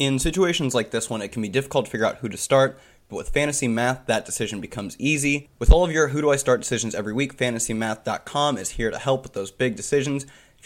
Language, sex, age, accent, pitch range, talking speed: English, male, 20-39, American, 115-140 Hz, 250 wpm